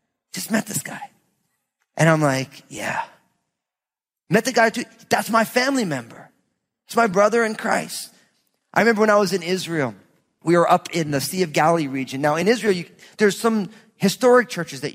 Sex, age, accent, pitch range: male, 30-49, American, 145-195 Hz